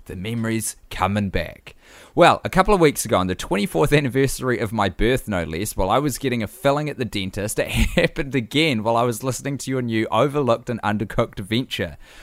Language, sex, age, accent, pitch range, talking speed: English, male, 20-39, Australian, 100-140 Hz, 205 wpm